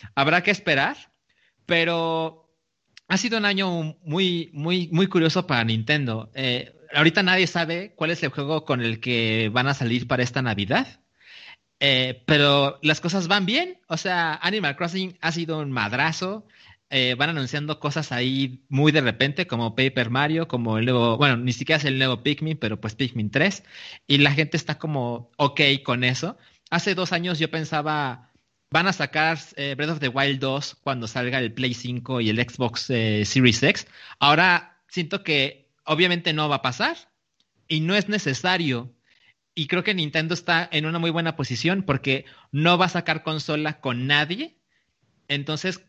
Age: 30-49